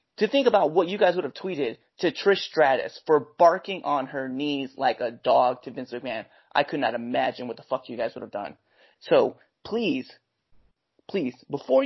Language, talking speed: English, 195 wpm